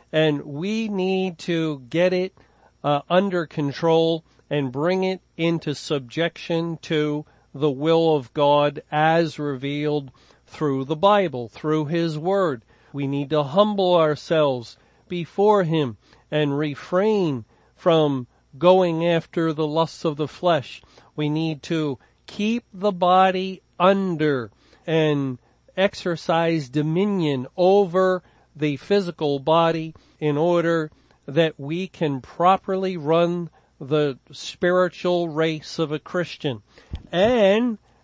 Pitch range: 150-180 Hz